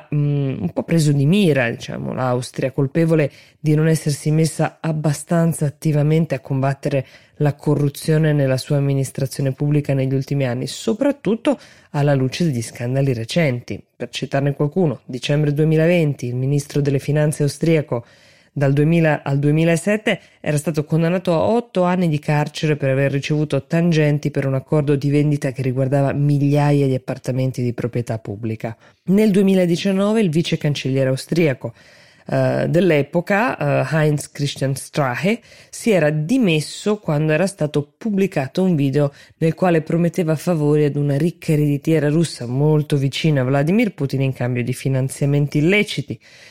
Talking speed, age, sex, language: 140 wpm, 20-39, female, Italian